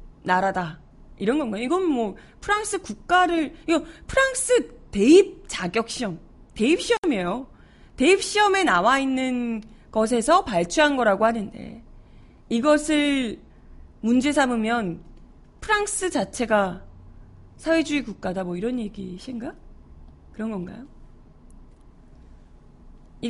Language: Korean